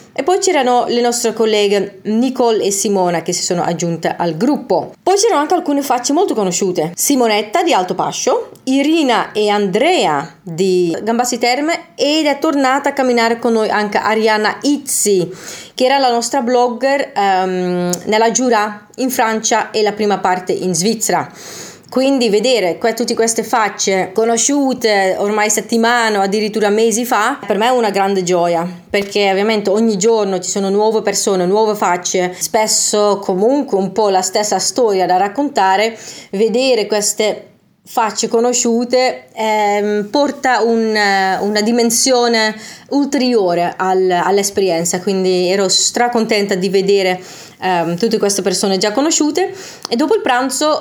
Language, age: Italian, 30-49